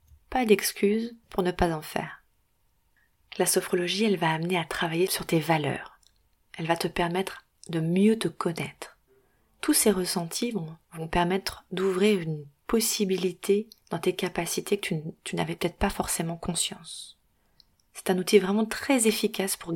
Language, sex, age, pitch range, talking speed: French, female, 30-49, 165-200 Hz, 155 wpm